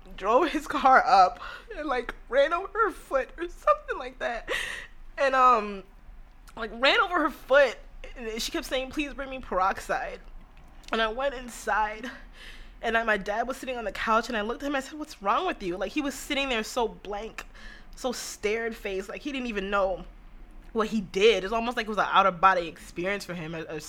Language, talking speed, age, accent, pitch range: English, 210 wpm, 20-39, American, 180-255 Hz